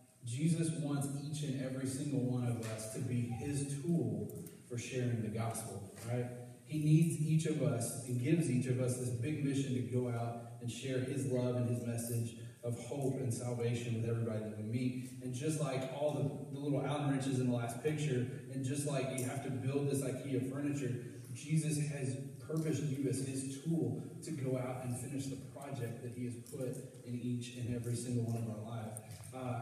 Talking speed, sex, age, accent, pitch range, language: 205 wpm, male, 30-49, American, 120-140 Hz, English